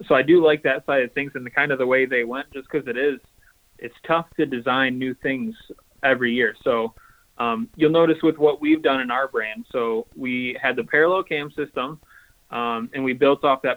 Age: 20-39